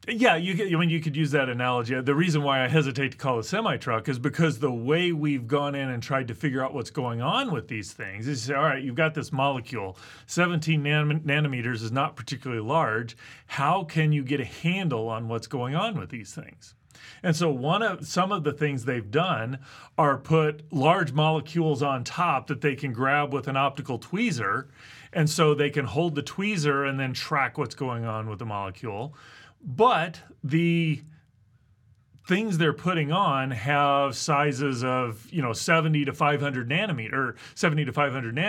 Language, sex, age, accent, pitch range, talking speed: English, male, 40-59, American, 125-155 Hz, 195 wpm